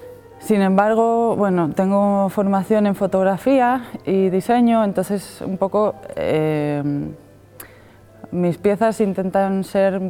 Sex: female